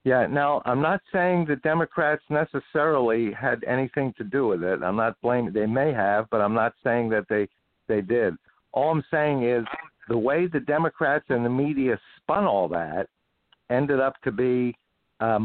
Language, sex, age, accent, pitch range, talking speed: English, male, 60-79, American, 115-145 Hz, 185 wpm